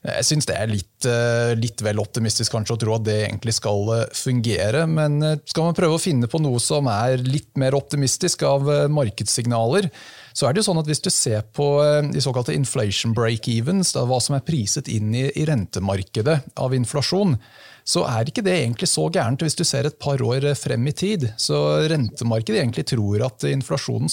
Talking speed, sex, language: 200 wpm, male, English